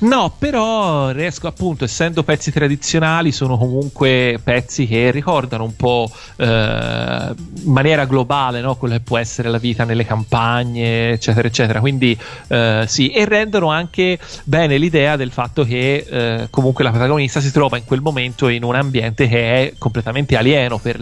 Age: 40-59